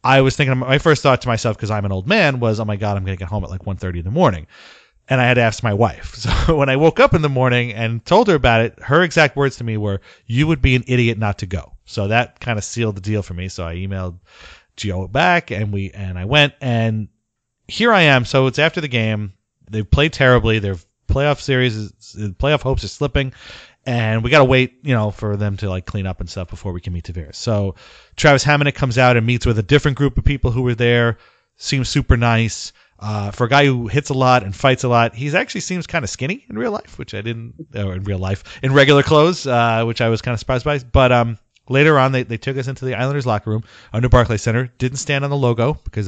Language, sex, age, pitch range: English, male, 30-49, 105-135 Hz